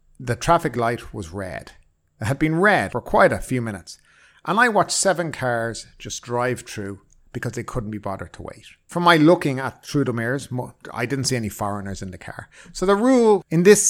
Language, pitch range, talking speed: English, 115-175 Hz, 210 wpm